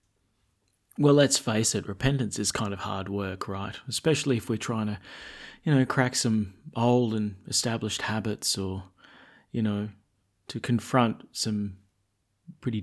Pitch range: 105-140 Hz